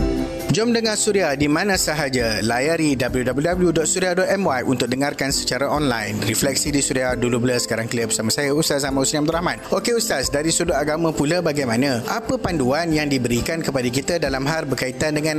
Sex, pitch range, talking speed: male, 140-185 Hz, 170 wpm